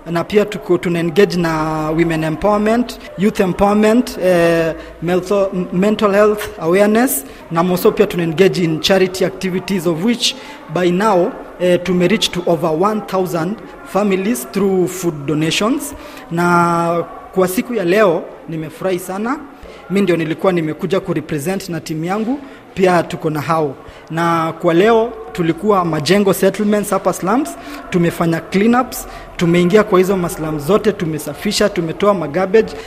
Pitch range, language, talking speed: 170-210 Hz, Swahili, 135 wpm